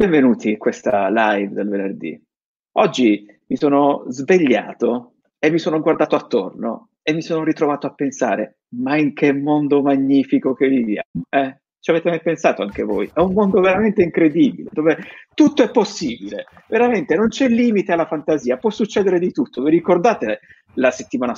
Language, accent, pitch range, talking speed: Italian, native, 135-180 Hz, 165 wpm